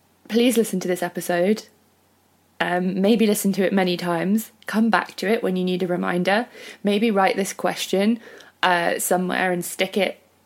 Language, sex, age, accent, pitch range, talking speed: English, female, 20-39, British, 175-210 Hz, 170 wpm